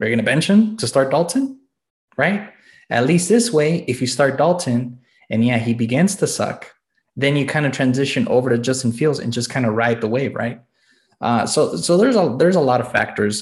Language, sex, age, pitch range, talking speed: English, male, 20-39, 110-135 Hz, 220 wpm